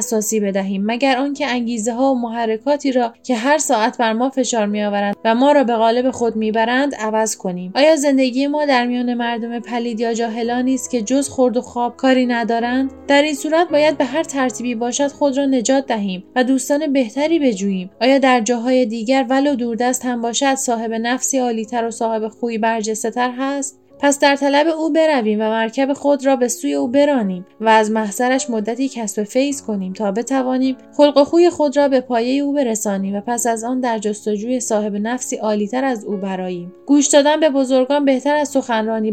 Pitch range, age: 225-270 Hz, 10-29